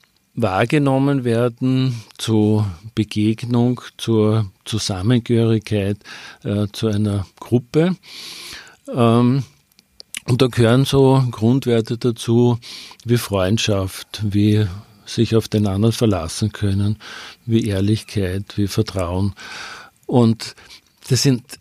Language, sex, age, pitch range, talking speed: German, male, 50-69, 105-125 Hz, 90 wpm